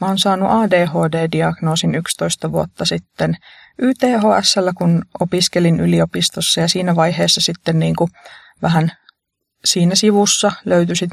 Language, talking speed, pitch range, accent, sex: Finnish, 115 wpm, 165-200 Hz, native, female